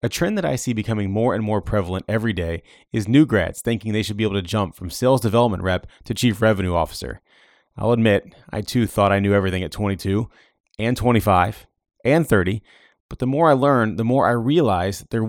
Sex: male